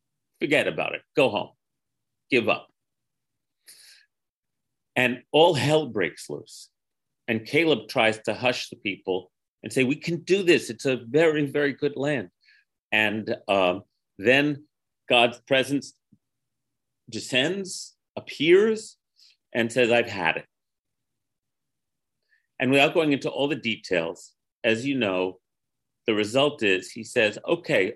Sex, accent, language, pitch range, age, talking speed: male, American, English, 115-140 Hz, 40-59, 125 wpm